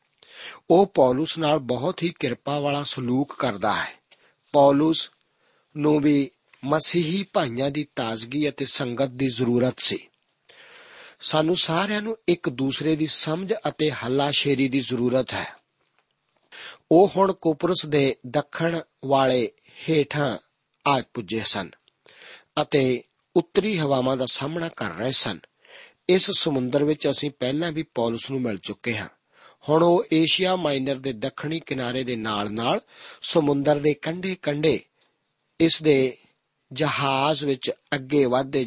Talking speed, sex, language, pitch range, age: 105 wpm, male, Punjabi, 130-165 Hz, 50-69